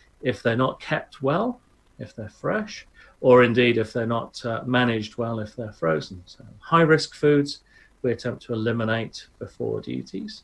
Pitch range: 110-140 Hz